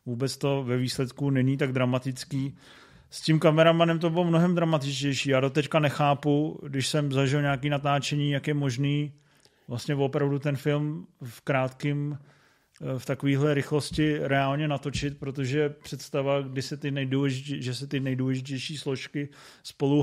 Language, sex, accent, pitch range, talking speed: Czech, male, native, 135-145 Hz, 145 wpm